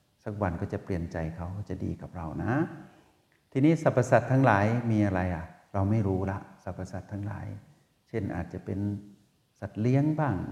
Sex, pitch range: male, 95-120 Hz